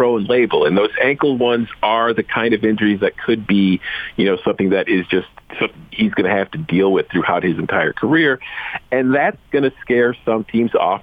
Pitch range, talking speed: 105-150 Hz, 210 wpm